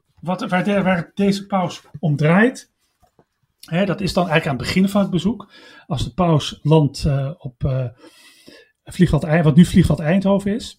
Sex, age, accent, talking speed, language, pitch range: male, 40-59, Dutch, 165 wpm, Dutch, 150-190 Hz